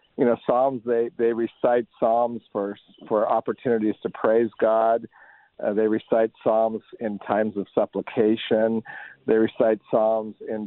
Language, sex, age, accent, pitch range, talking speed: English, male, 50-69, American, 110-125 Hz, 140 wpm